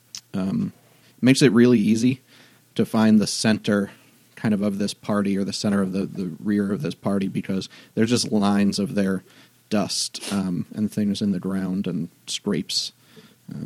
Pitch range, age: 105-125 Hz, 30-49